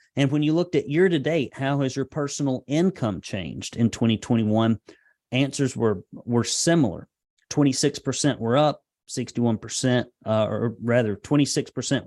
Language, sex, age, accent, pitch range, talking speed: English, male, 30-49, American, 110-140 Hz, 140 wpm